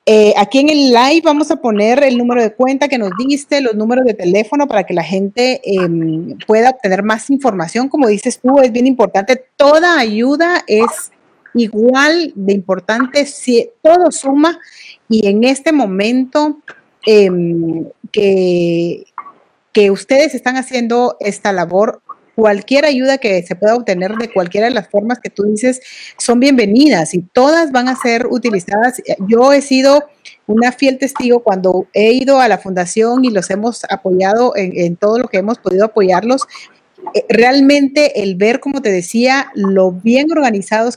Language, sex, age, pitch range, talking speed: Spanish, female, 40-59, 200-265 Hz, 160 wpm